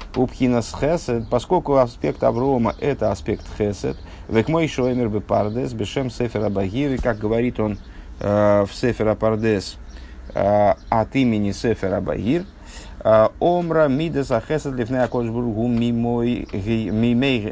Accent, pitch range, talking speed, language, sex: native, 100-130 Hz, 115 wpm, Russian, male